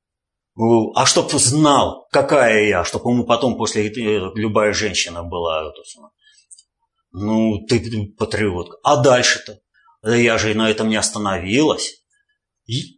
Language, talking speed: Russian, 115 wpm